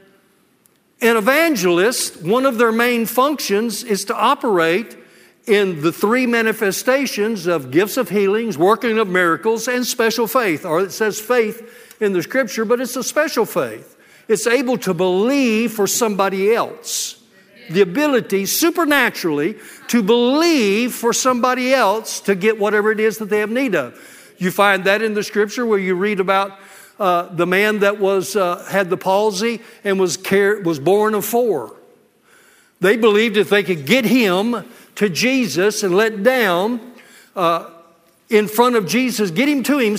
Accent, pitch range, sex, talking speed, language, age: American, 195-245 Hz, male, 160 wpm, English, 60-79